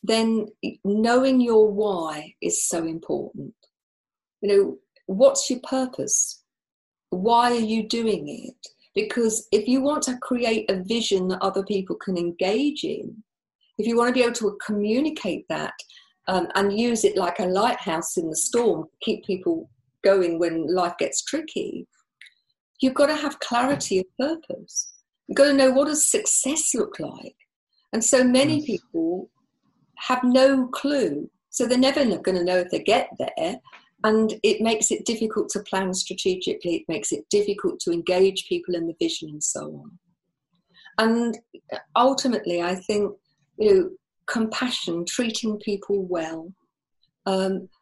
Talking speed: 155 wpm